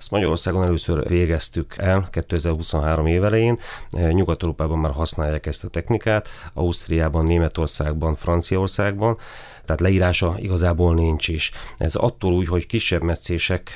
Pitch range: 85-95 Hz